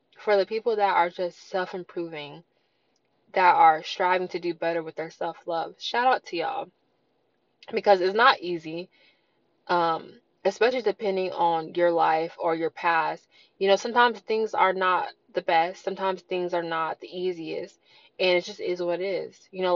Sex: female